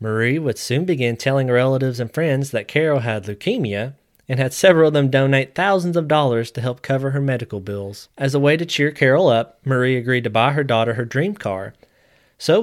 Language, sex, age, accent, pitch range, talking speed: English, male, 20-39, American, 115-145 Hz, 210 wpm